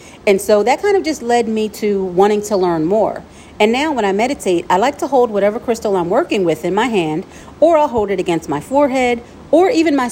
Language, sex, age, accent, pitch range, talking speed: English, female, 40-59, American, 185-255 Hz, 235 wpm